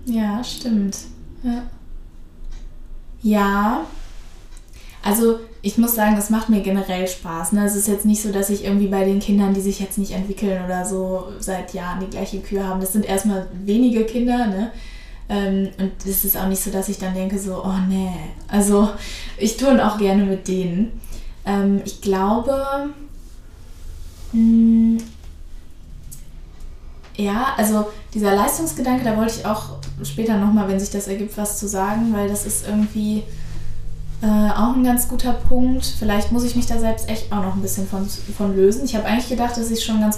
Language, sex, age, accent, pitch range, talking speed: German, female, 20-39, German, 185-220 Hz, 175 wpm